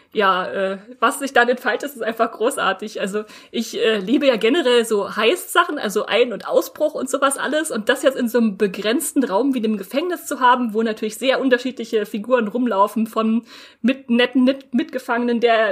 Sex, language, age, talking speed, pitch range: female, German, 20-39, 190 wpm, 220-260 Hz